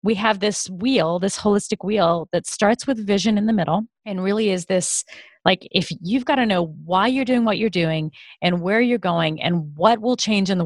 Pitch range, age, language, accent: 165-205 Hz, 30-49, English, American